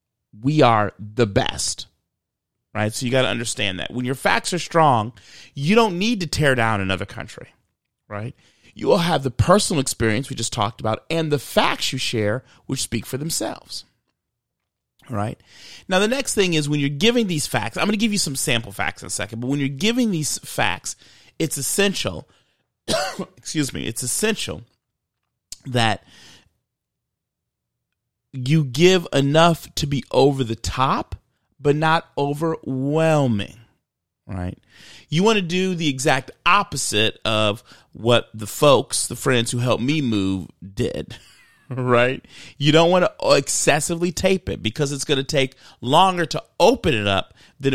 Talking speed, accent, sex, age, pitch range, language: 160 wpm, American, male, 30-49, 115-160 Hz, English